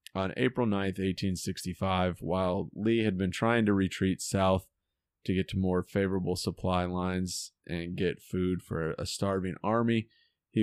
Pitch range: 90-105 Hz